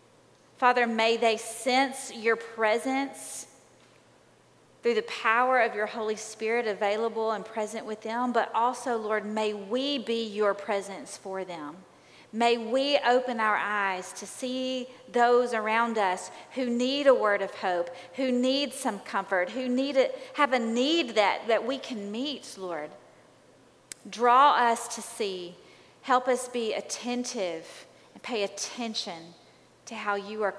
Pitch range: 200-240 Hz